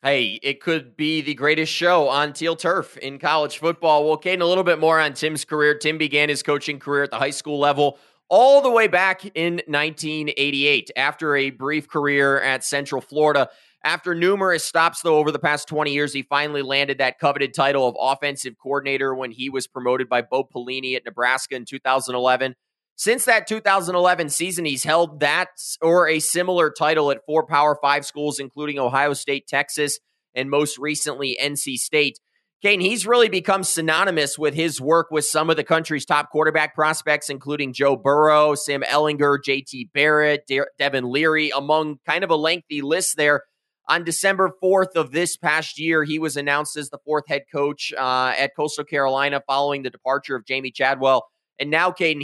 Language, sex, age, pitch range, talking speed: English, male, 20-39, 140-160 Hz, 185 wpm